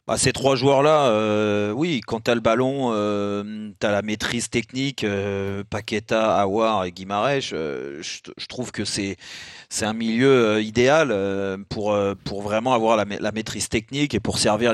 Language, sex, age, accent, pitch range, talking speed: French, male, 30-49, French, 105-130 Hz, 185 wpm